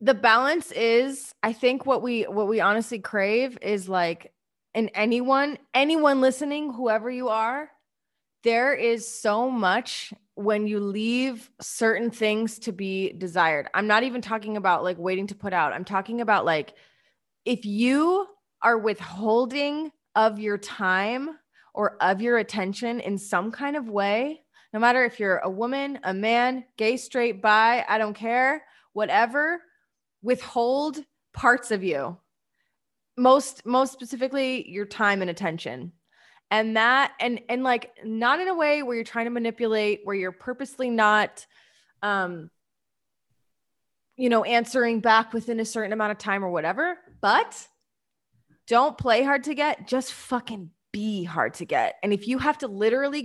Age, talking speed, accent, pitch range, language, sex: 20-39, 155 wpm, American, 205-255 Hz, English, female